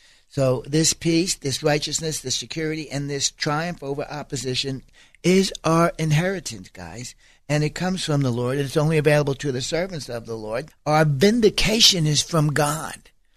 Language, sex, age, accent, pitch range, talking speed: English, male, 60-79, American, 135-170 Hz, 160 wpm